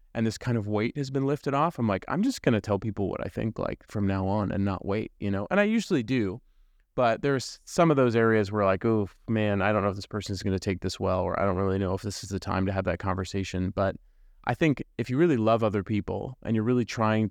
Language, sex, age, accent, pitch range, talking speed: English, male, 30-49, American, 100-120 Hz, 285 wpm